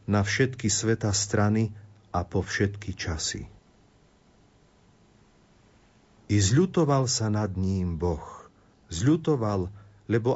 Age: 50-69